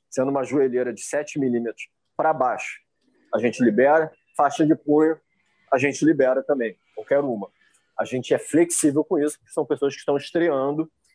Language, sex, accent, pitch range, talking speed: Portuguese, male, Brazilian, 120-160 Hz, 170 wpm